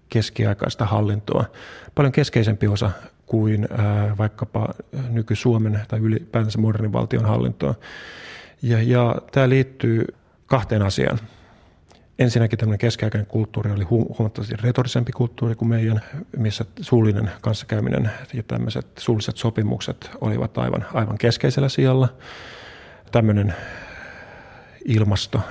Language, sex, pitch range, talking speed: Finnish, male, 105-115 Hz, 100 wpm